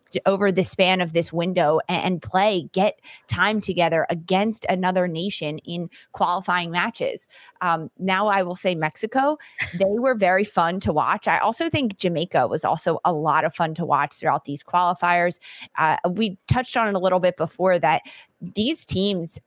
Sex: female